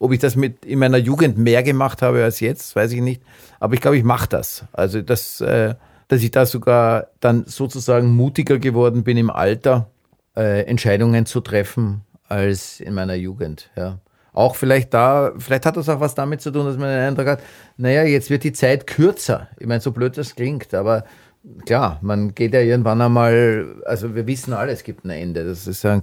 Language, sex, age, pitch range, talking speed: German, male, 40-59, 110-135 Hz, 205 wpm